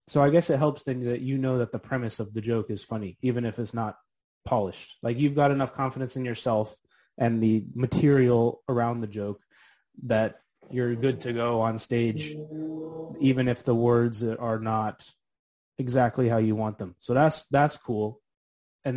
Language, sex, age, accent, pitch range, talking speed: English, male, 20-39, American, 110-130 Hz, 185 wpm